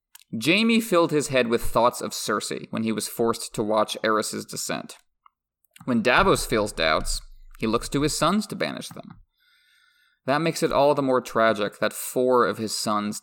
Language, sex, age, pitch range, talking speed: English, male, 30-49, 115-160 Hz, 180 wpm